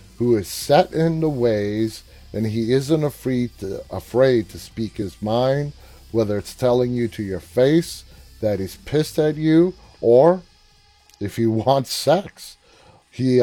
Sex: male